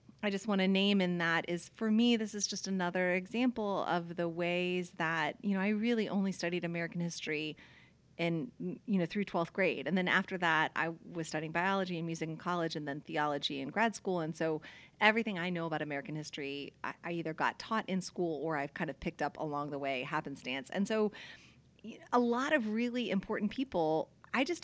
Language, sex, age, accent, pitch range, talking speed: English, female, 30-49, American, 155-190 Hz, 210 wpm